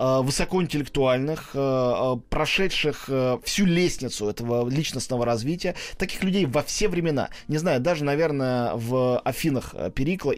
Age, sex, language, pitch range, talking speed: 20-39, male, Russian, 125-180 Hz, 110 wpm